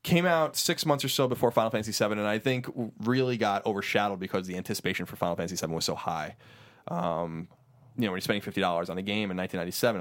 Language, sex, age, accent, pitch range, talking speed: English, male, 20-39, American, 95-120 Hz, 220 wpm